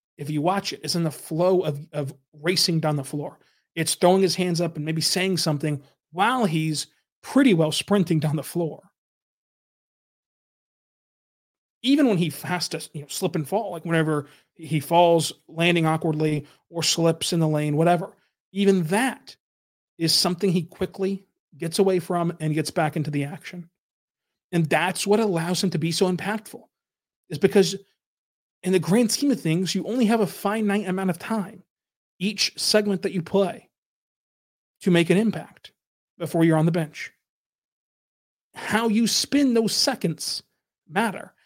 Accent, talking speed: American, 165 wpm